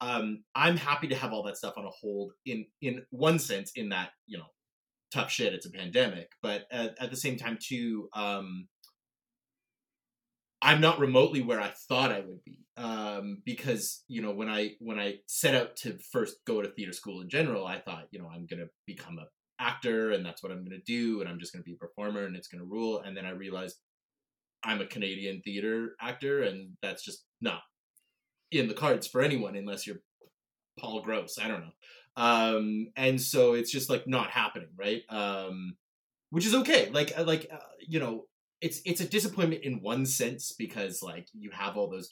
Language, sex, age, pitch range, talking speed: English, male, 20-39, 100-130 Hz, 205 wpm